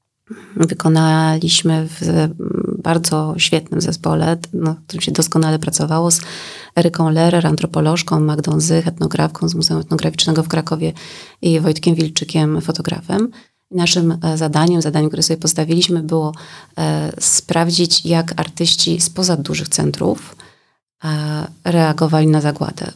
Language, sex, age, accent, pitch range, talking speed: Polish, female, 30-49, native, 160-170 Hz, 110 wpm